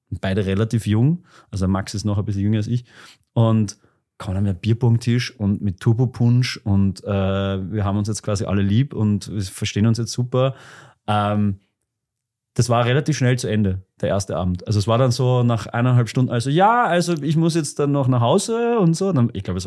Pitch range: 105-130 Hz